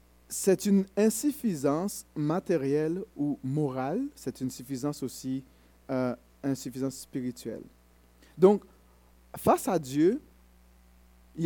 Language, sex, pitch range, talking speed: French, male, 110-175 Hz, 95 wpm